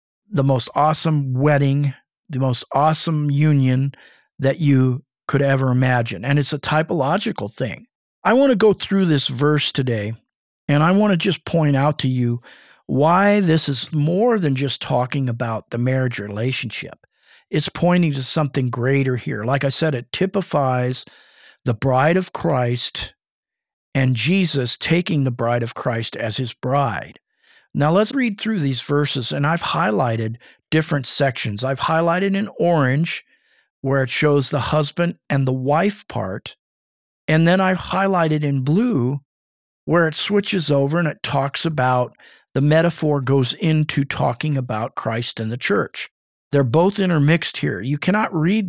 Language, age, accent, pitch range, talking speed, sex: English, 50-69, American, 130-165 Hz, 155 wpm, male